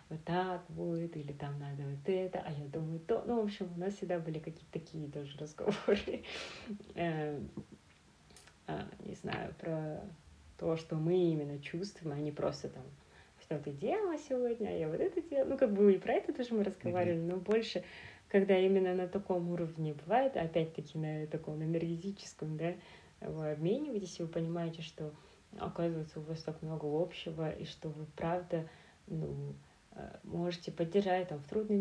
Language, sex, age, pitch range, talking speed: Russian, female, 30-49, 160-200 Hz, 165 wpm